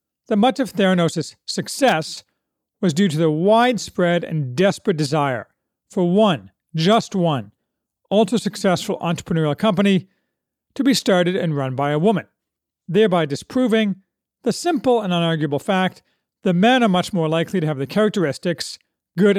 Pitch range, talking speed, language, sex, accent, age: 155-215 Hz, 140 wpm, English, male, American, 40-59